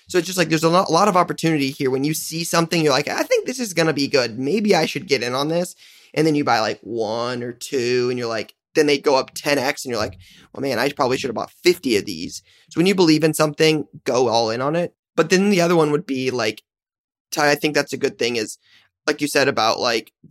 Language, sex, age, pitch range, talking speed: English, male, 20-39, 135-160 Hz, 270 wpm